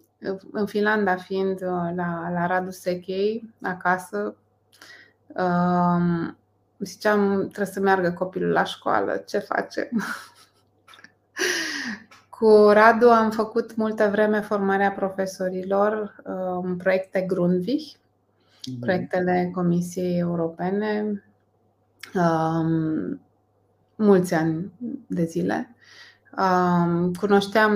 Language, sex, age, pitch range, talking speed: Romanian, female, 20-39, 170-210 Hz, 80 wpm